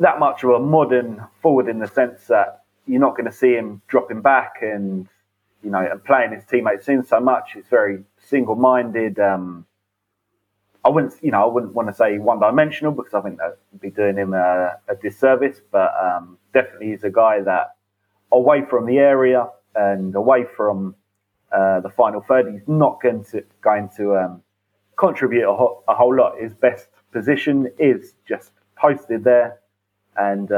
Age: 30-49